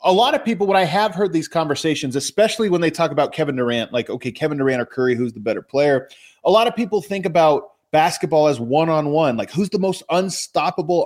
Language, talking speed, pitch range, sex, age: English, 220 wpm, 150-195 Hz, male, 30-49